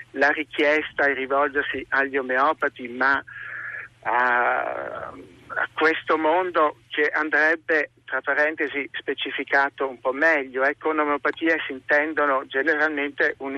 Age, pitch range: 50-69, 135-170 Hz